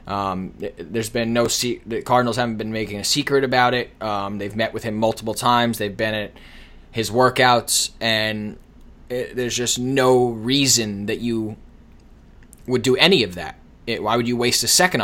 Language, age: English, 20-39